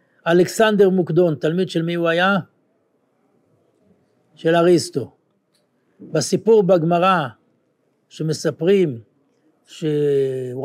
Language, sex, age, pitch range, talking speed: Hebrew, male, 60-79, 155-215 Hz, 75 wpm